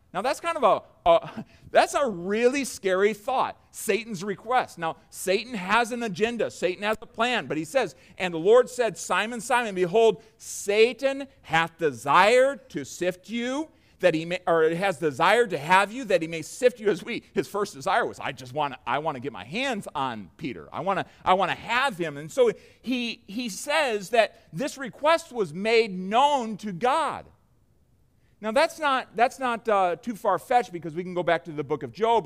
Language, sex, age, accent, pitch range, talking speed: English, male, 40-59, American, 175-240 Hz, 195 wpm